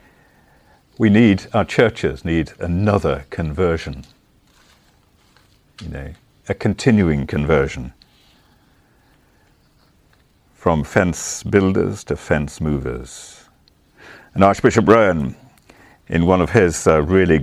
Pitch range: 75-100 Hz